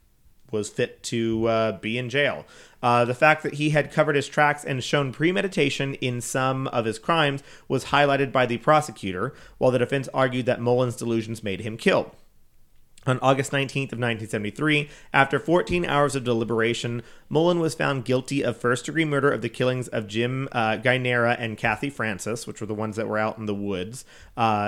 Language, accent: English, American